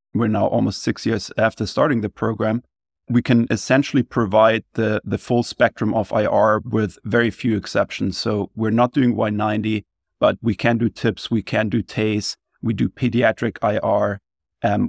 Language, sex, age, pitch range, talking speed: English, male, 30-49, 105-115 Hz, 170 wpm